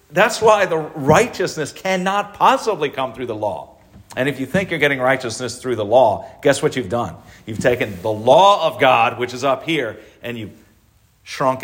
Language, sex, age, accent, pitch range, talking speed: English, male, 40-59, American, 95-135 Hz, 190 wpm